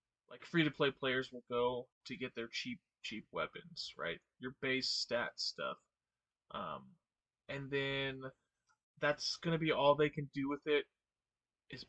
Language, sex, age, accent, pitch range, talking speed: English, male, 20-39, American, 130-160 Hz, 150 wpm